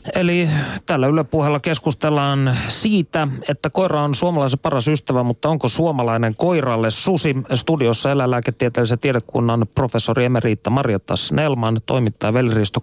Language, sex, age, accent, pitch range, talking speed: Finnish, male, 30-49, native, 120-155 Hz, 115 wpm